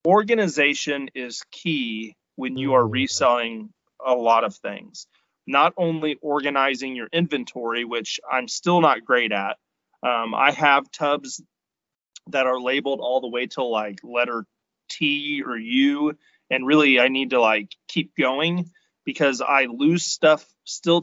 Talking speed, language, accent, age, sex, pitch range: 145 wpm, English, American, 30-49, male, 125-160 Hz